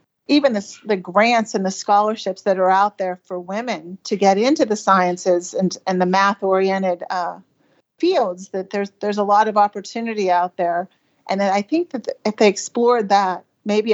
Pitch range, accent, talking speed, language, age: 190-220 Hz, American, 185 wpm, English, 40-59